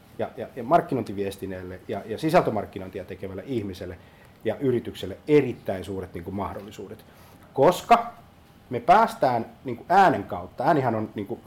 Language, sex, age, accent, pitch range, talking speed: Finnish, male, 30-49, native, 100-120 Hz, 125 wpm